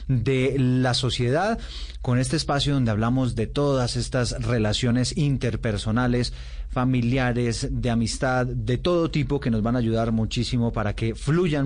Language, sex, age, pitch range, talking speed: Spanish, male, 30-49, 110-135 Hz, 145 wpm